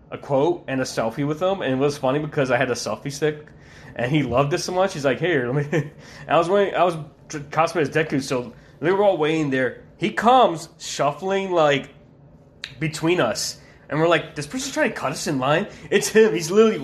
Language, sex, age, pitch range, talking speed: English, male, 20-39, 135-180 Hz, 225 wpm